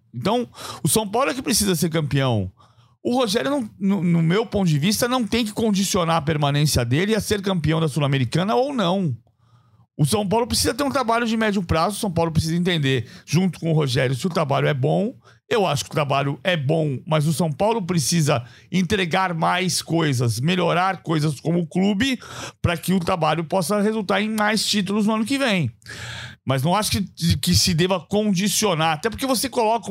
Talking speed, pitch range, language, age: 200 wpm, 130-195 Hz, Portuguese, 50-69